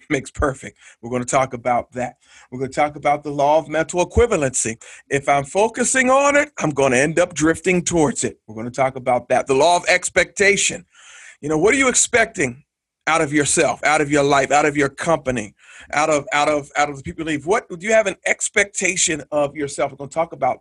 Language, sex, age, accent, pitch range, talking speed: English, male, 40-59, American, 130-165 Hz, 235 wpm